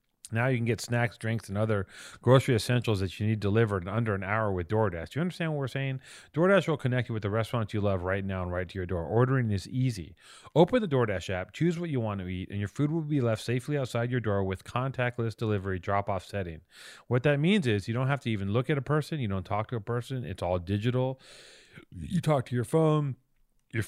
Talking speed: 245 wpm